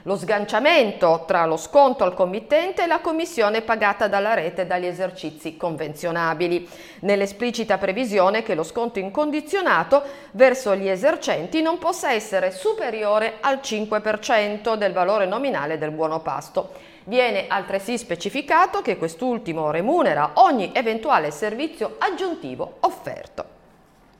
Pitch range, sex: 175-245 Hz, female